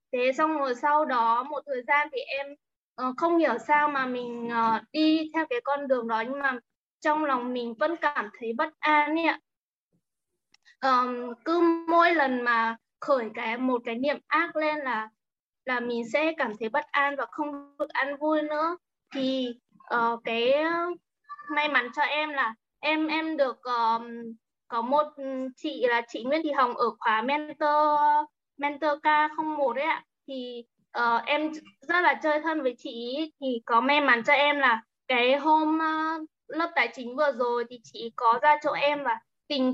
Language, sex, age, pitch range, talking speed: Vietnamese, female, 20-39, 245-300 Hz, 175 wpm